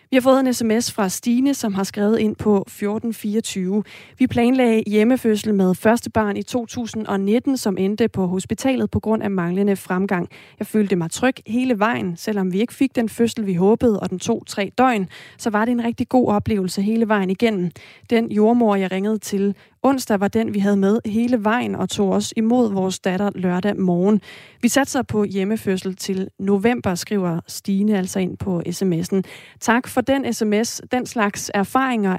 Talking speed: 185 wpm